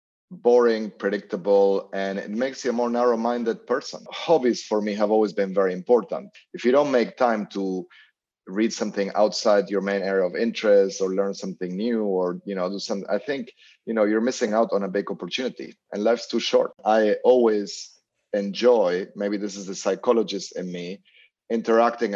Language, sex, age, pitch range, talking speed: English, male, 30-49, 100-120 Hz, 180 wpm